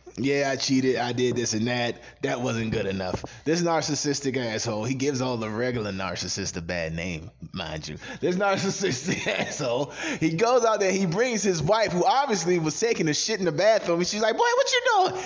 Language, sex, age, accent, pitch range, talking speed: English, male, 20-39, American, 120-180 Hz, 210 wpm